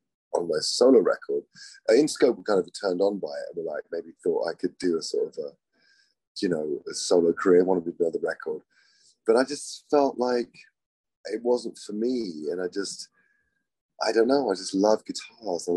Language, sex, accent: English, male, British